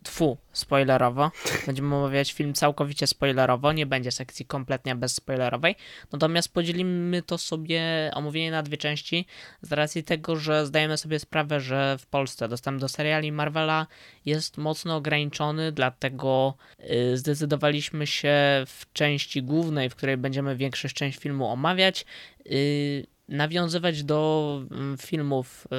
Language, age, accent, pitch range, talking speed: Polish, 20-39, native, 130-160 Hz, 125 wpm